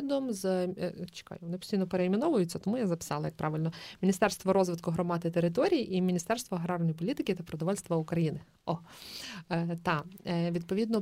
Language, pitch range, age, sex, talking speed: Ukrainian, 175-210 Hz, 20-39, female, 130 wpm